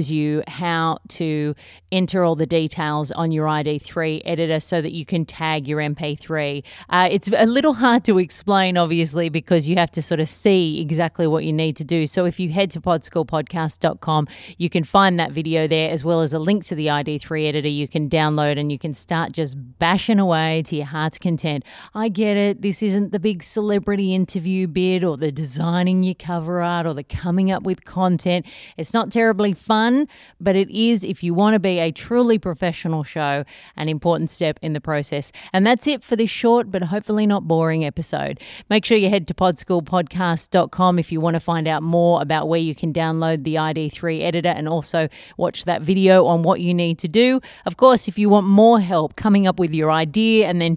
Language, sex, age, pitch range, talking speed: English, female, 30-49, 155-190 Hz, 205 wpm